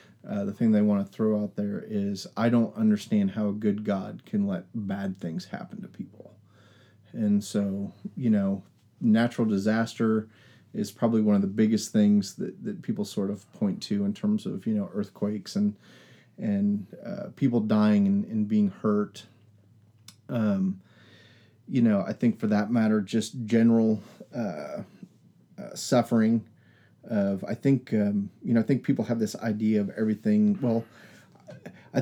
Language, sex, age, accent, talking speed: English, male, 30-49, American, 165 wpm